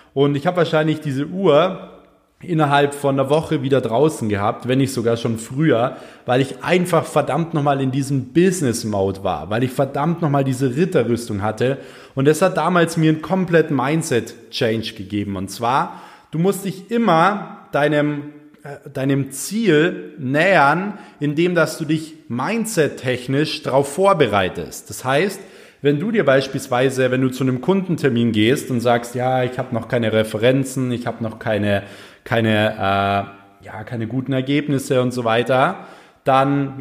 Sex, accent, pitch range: male, German, 115-155 Hz